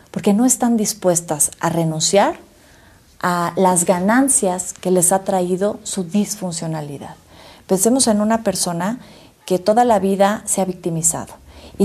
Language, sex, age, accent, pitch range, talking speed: Spanish, female, 40-59, Mexican, 165-205 Hz, 135 wpm